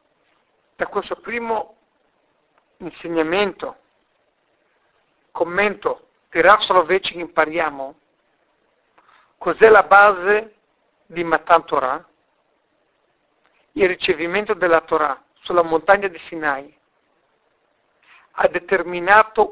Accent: native